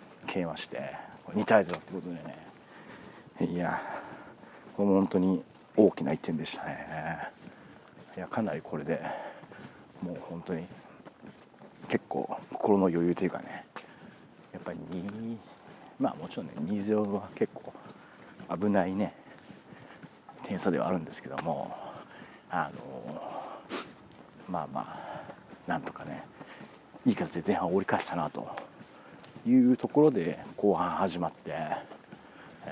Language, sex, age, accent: Japanese, male, 40-59, native